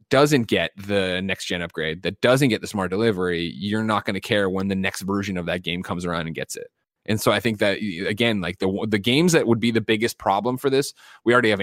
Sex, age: male, 20-39